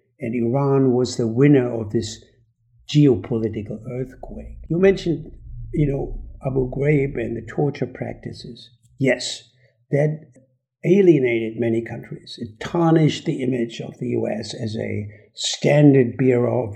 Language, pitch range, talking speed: English, 115-145 Hz, 130 wpm